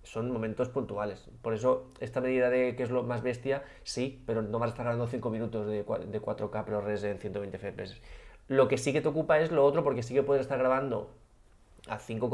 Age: 20-39